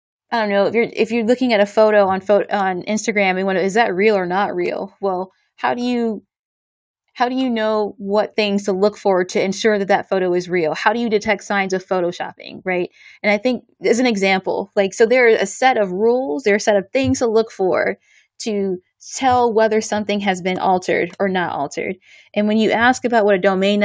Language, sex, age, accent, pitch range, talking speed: English, female, 20-39, American, 195-230 Hz, 230 wpm